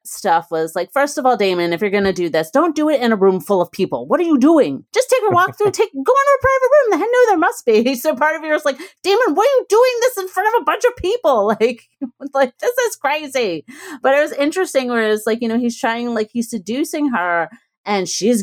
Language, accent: English, American